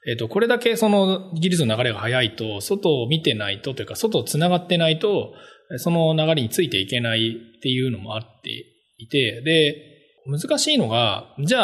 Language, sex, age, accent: Japanese, male, 20-39, native